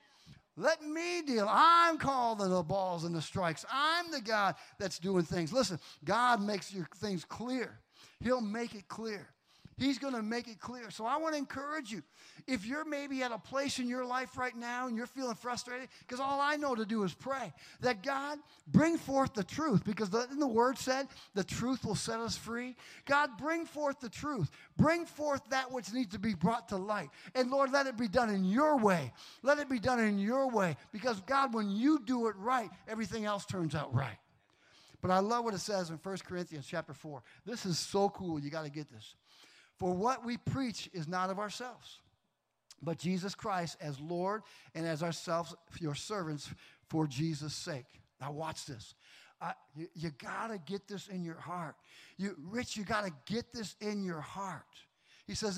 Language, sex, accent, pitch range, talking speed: English, male, American, 165-250 Hz, 200 wpm